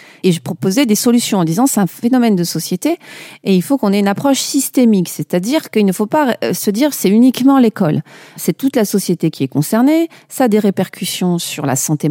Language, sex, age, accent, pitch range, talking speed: French, female, 40-59, French, 170-235 Hz, 235 wpm